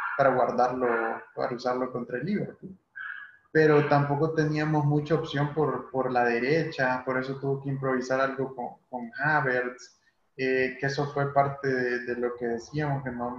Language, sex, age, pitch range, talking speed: Spanish, male, 20-39, 125-145 Hz, 165 wpm